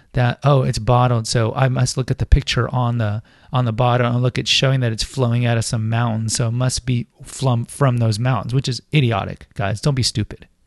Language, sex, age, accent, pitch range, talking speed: English, male, 30-49, American, 115-155 Hz, 230 wpm